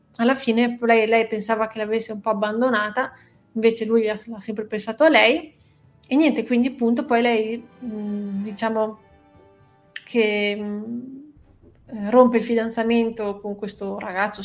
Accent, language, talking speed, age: native, Italian, 135 wpm, 30-49